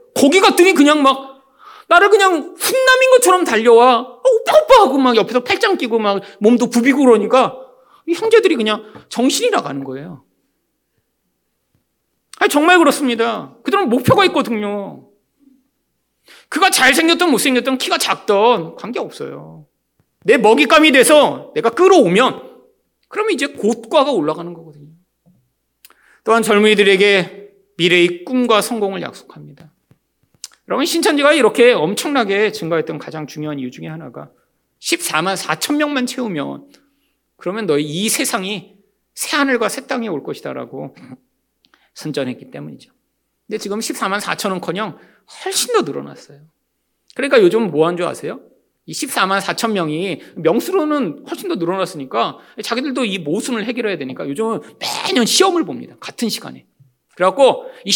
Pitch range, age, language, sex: 195-315 Hz, 40-59, Korean, male